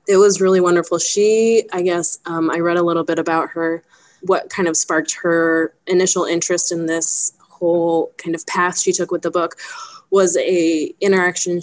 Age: 20-39